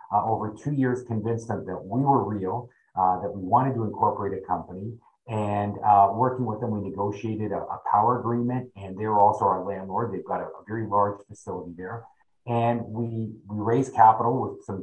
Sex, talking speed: male, 200 wpm